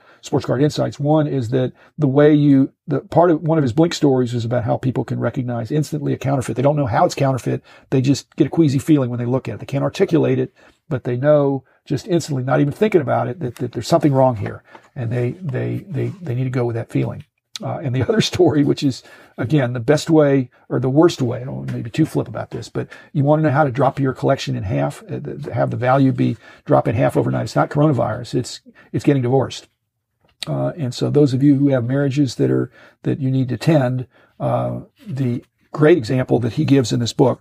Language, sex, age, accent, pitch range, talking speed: English, male, 50-69, American, 120-145 Hz, 240 wpm